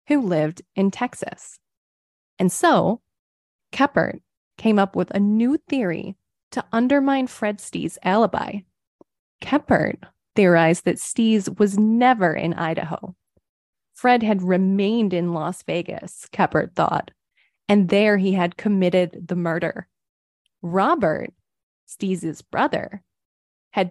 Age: 20-39